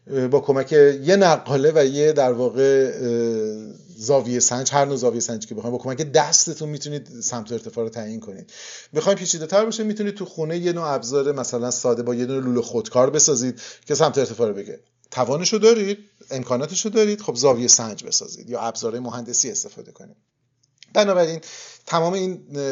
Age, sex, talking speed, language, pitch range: 30-49, male, 170 wpm, Persian, 120-165 Hz